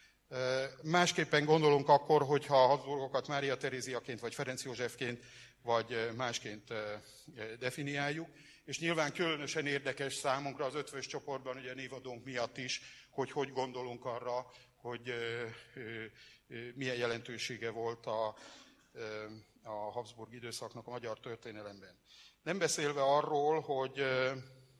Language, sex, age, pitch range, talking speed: Hungarian, male, 60-79, 120-140 Hz, 105 wpm